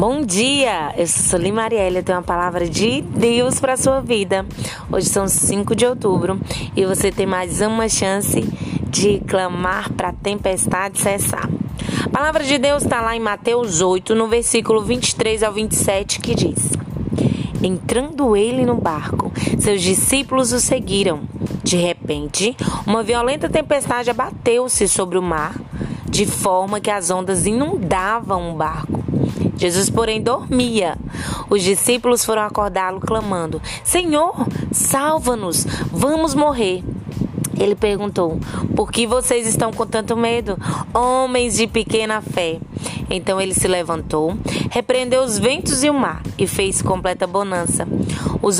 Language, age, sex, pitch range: Portuguese, 20-39, female, 185-235 Hz